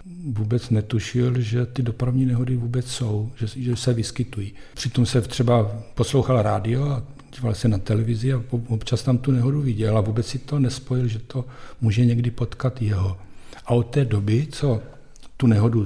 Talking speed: 175 wpm